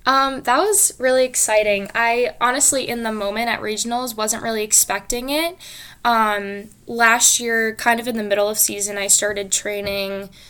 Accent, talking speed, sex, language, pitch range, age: American, 165 wpm, female, English, 205-235 Hz, 10-29